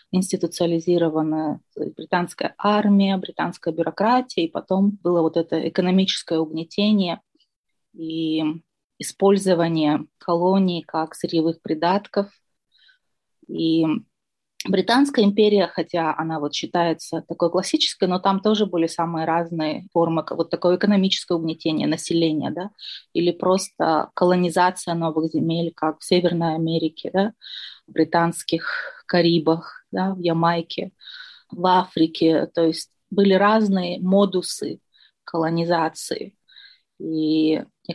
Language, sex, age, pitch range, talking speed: Russian, female, 20-39, 165-195 Hz, 105 wpm